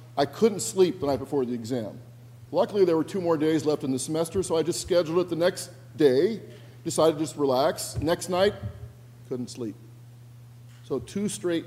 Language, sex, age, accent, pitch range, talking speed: English, male, 50-69, American, 120-155 Hz, 190 wpm